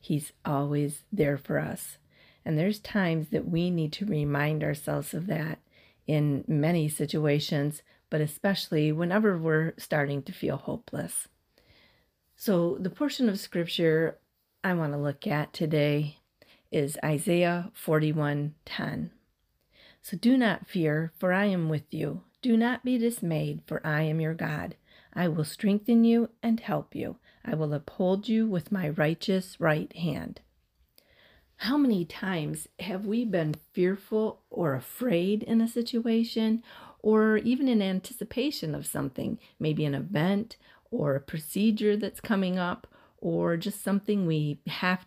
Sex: female